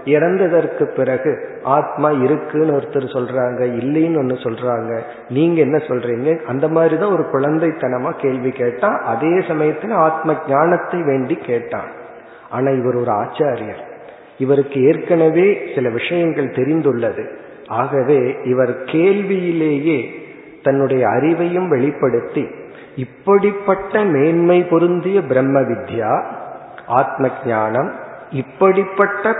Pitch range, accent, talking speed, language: 130-175 Hz, native, 100 wpm, Tamil